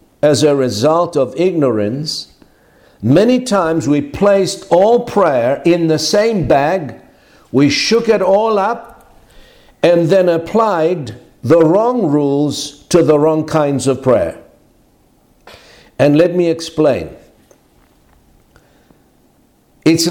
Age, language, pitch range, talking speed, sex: 60-79, English, 155-195 Hz, 110 wpm, male